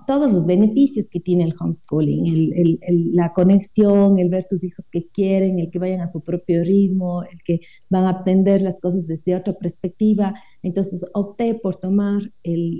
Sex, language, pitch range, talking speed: female, Spanish, 175-205 Hz, 190 wpm